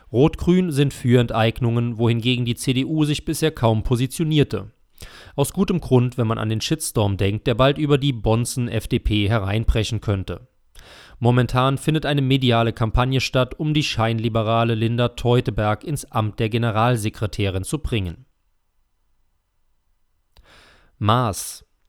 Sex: male